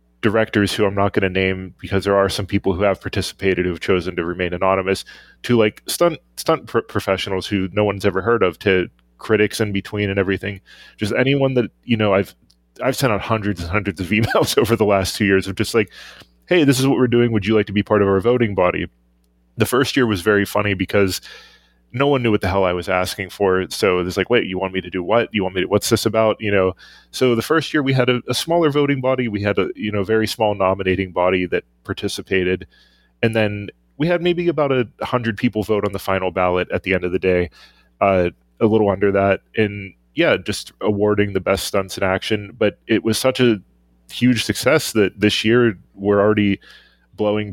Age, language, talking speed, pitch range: 20-39, English, 230 wpm, 95-110 Hz